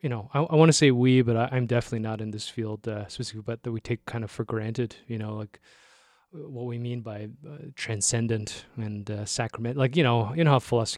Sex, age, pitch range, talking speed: male, 20-39, 115-140 Hz, 235 wpm